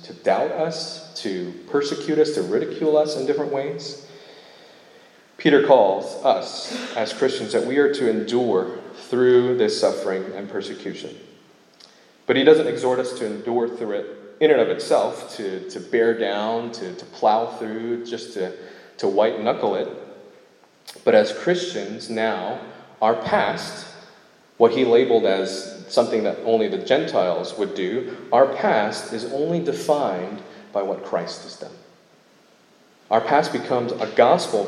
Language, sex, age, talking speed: English, male, 30-49, 150 wpm